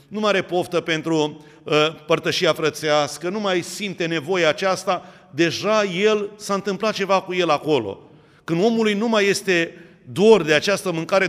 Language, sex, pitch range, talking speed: Romanian, male, 155-195 Hz, 160 wpm